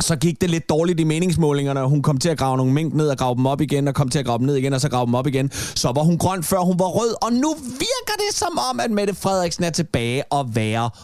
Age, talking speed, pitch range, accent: 30-49, 305 wpm, 130-175 Hz, native